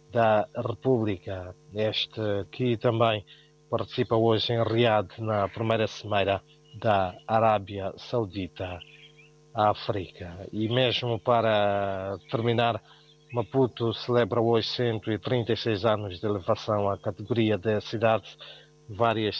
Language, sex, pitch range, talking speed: Portuguese, male, 105-120 Hz, 100 wpm